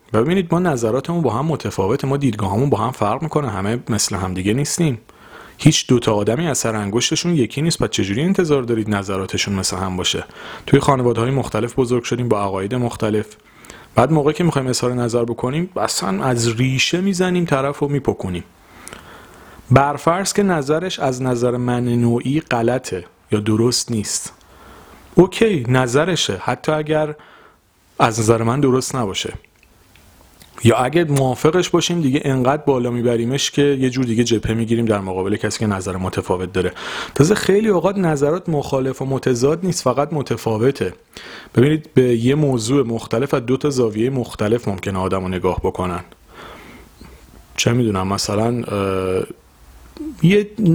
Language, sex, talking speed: Persian, male, 145 wpm